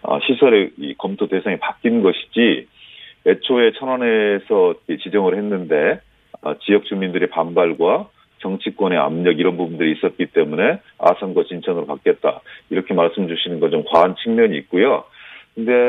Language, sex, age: Korean, male, 40-59